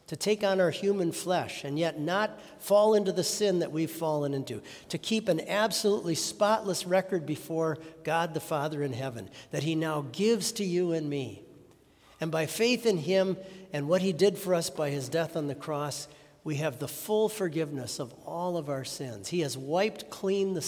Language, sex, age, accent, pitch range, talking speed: English, male, 60-79, American, 135-185 Hz, 200 wpm